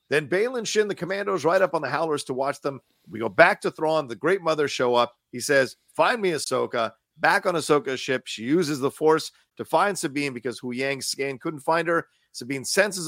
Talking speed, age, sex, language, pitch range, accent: 215 wpm, 40-59, male, English, 125-175 Hz, American